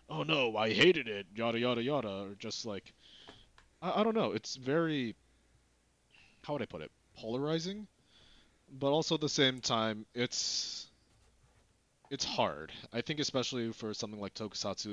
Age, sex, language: 20-39, male, English